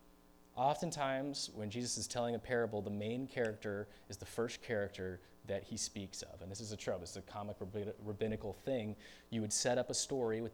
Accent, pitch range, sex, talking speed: American, 95-140 Hz, male, 200 wpm